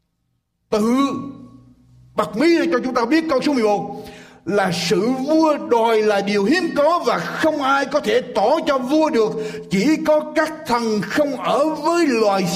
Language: Vietnamese